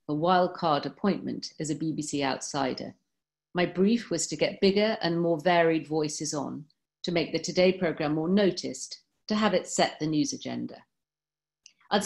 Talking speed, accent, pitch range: 170 wpm, British, 155-205 Hz